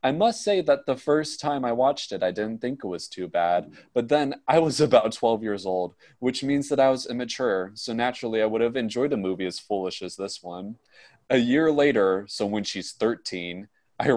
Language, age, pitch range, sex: English, 20-39, 100-135 Hz, male